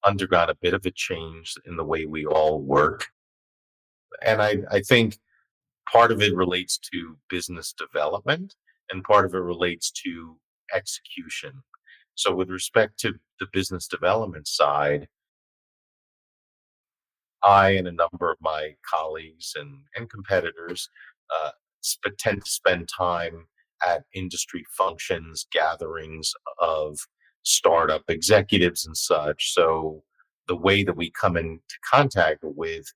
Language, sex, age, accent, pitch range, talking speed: English, male, 40-59, American, 80-105 Hz, 130 wpm